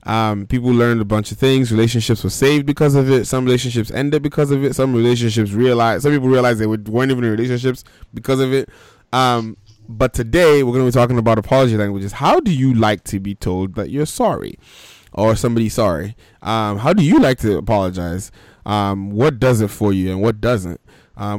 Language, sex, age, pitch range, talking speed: English, male, 20-39, 105-130 Hz, 210 wpm